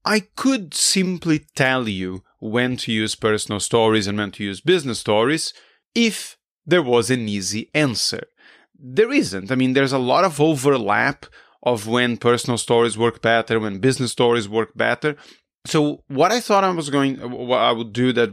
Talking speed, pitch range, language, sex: 175 wpm, 115-155 Hz, English, male